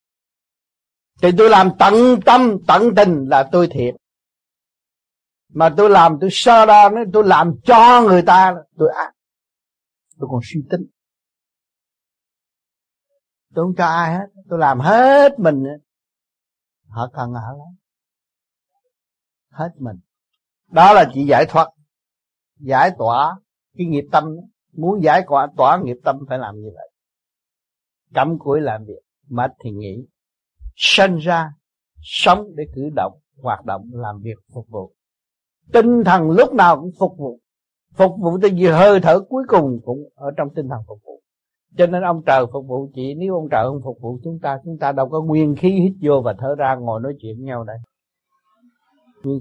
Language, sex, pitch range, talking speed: Vietnamese, male, 125-185 Hz, 165 wpm